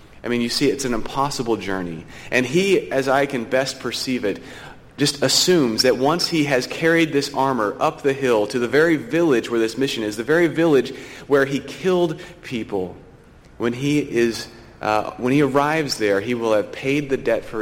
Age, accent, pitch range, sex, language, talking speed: 30-49, American, 110-145 Hz, male, English, 200 wpm